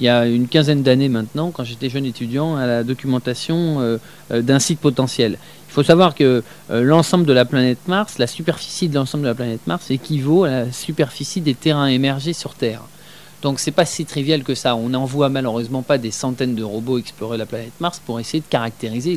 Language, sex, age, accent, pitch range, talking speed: French, male, 30-49, French, 115-160 Hz, 220 wpm